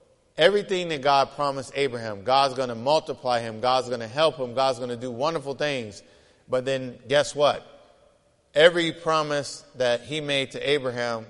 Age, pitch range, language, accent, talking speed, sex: 50-69, 130-155 Hz, English, American, 170 wpm, male